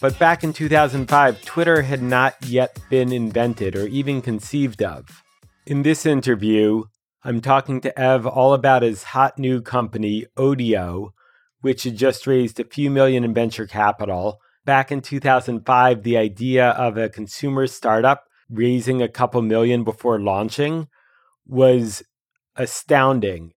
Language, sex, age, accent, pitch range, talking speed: English, male, 30-49, American, 110-135 Hz, 140 wpm